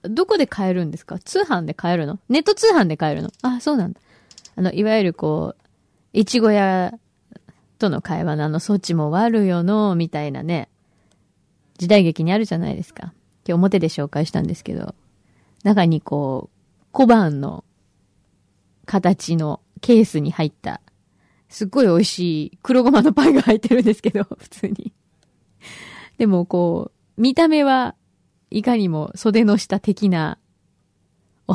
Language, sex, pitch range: Japanese, female, 170-245 Hz